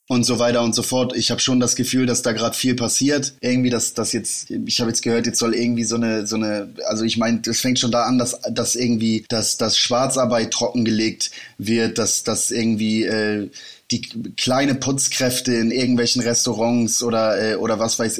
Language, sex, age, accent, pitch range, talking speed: German, male, 30-49, German, 110-120 Hz, 205 wpm